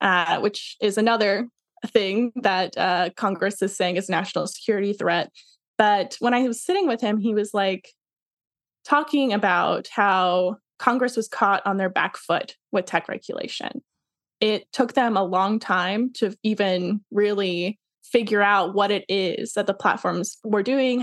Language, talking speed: English, 160 wpm